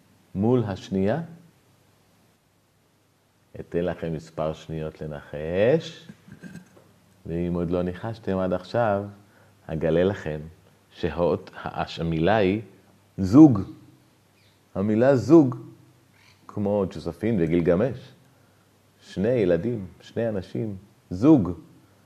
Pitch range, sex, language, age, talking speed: 90-120 Hz, male, Hebrew, 40-59, 75 wpm